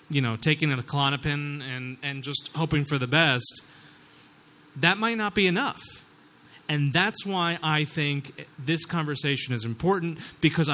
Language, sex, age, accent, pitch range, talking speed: English, male, 30-49, American, 145-180 Hz, 145 wpm